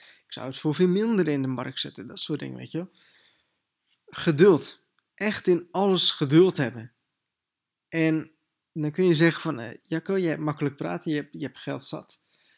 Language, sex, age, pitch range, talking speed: Dutch, male, 20-39, 135-160 Hz, 190 wpm